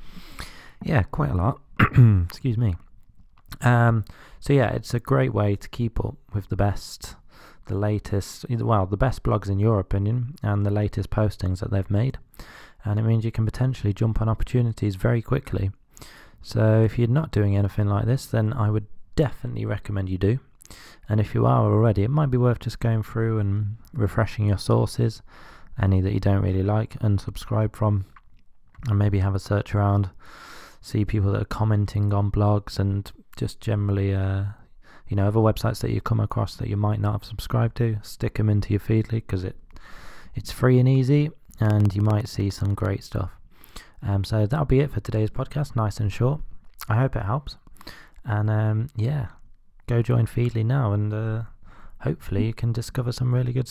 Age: 20-39